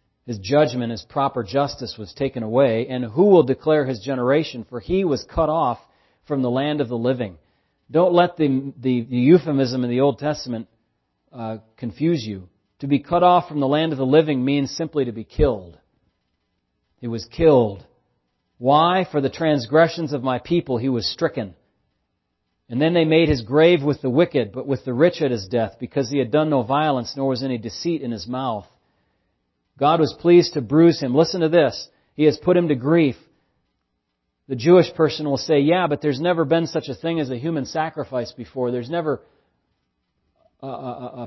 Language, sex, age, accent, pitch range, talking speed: English, male, 40-59, American, 120-160 Hz, 190 wpm